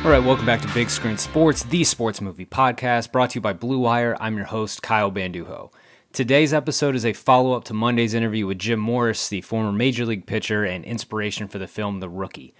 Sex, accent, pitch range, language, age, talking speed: male, American, 100-125 Hz, English, 20-39, 215 wpm